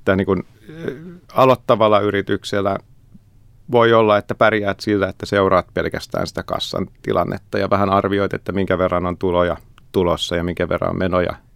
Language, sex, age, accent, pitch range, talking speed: Finnish, male, 30-49, native, 95-110 Hz, 150 wpm